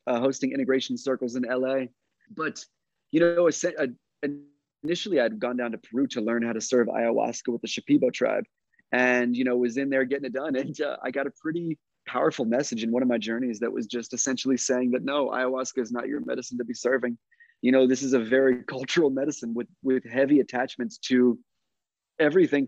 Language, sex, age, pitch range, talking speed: English, male, 30-49, 120-145 Hz, 205 wpm